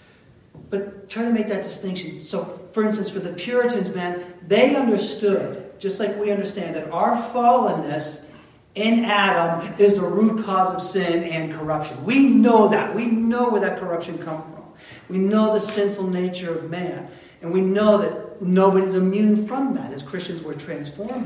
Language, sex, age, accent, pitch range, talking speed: English, male, 40-59, American, 160-205 Hz, 170 wpm